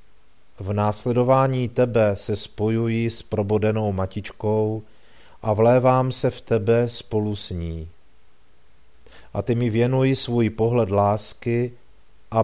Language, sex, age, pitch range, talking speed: Czech, male, 50-69, 95-115 Hz, 115 wpm